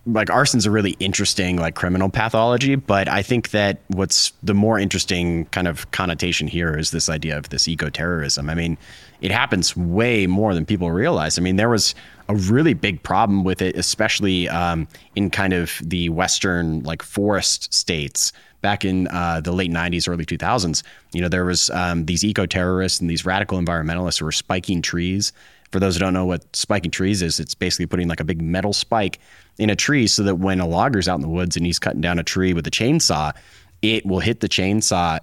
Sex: male